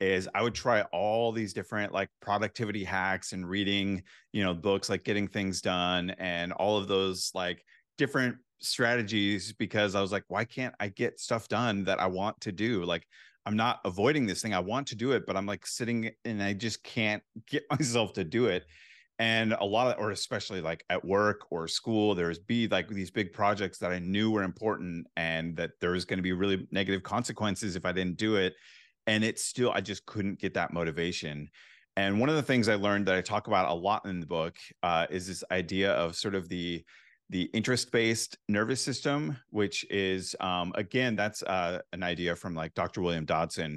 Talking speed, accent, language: 205 wpm, American, English